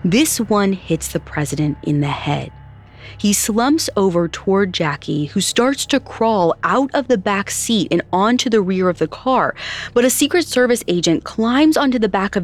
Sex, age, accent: female, 30-49, American